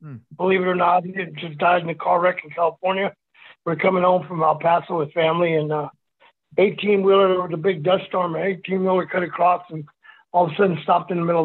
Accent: American